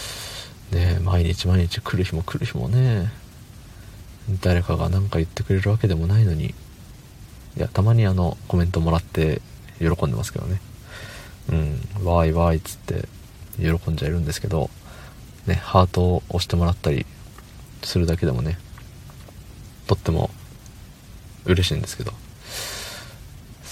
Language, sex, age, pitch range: Japanese, male, 40-59, 90-115 Hz